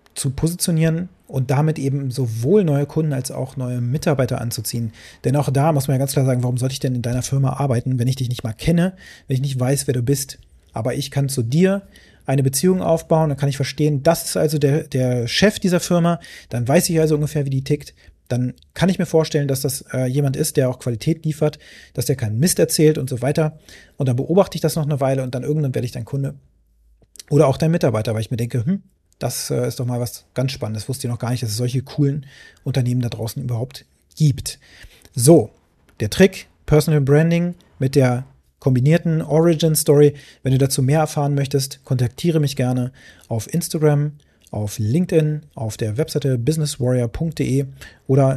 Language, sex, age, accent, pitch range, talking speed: German, male, 30-49, German, 125-150 Hz, 205 wpm